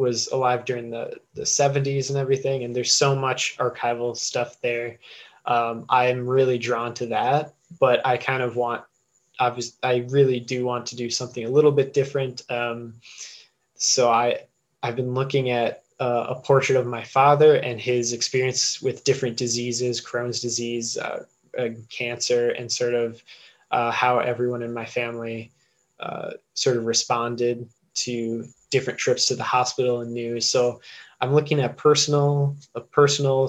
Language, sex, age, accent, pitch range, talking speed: English, male, 20-39, American, 120-135 Hz, 165 wpm